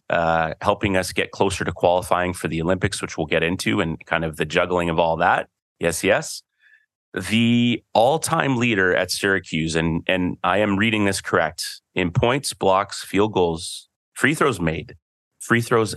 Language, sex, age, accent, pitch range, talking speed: English, male, 30-49, American, 90-105 Hz, 175 wpm